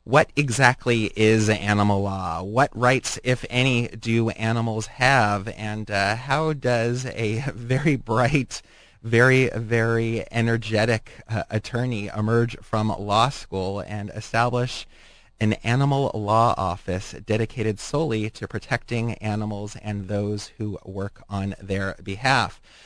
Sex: male